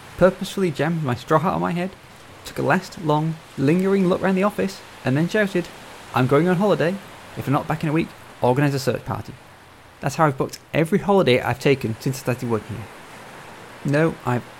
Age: 20-39